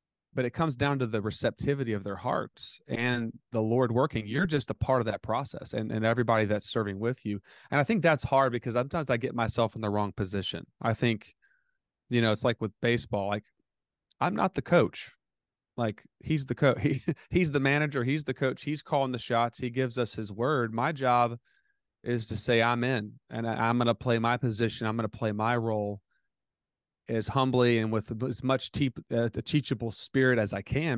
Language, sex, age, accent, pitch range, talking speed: English, male, 30-49, American, 110-130 Hz, 215 wpm